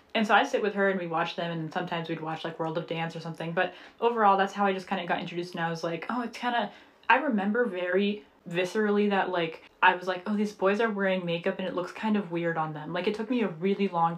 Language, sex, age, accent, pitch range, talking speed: English, female, 20-39, American, 175-205 Hz, 290 wpm